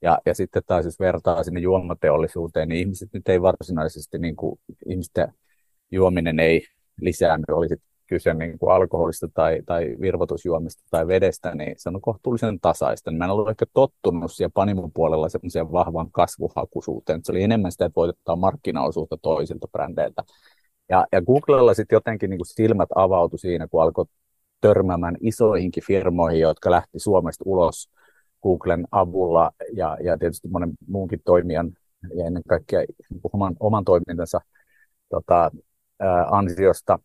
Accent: native